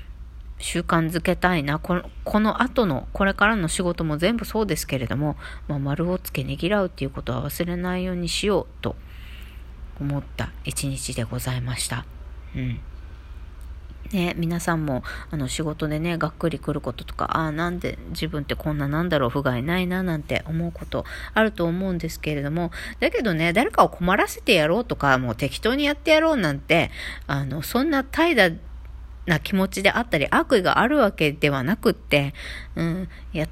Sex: female